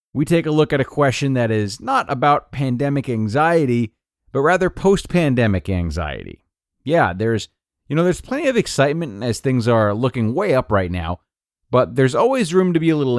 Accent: American